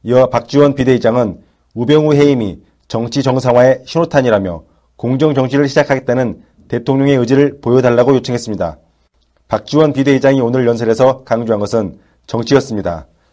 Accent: native